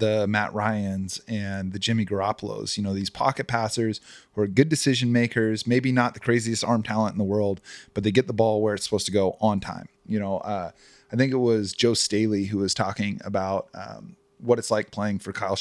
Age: 30-49